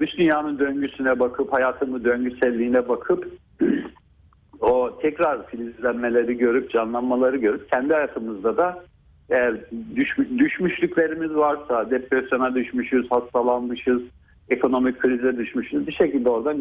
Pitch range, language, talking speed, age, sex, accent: 115-155 Hz, Turkish, 100 wpm, 50-69, male, native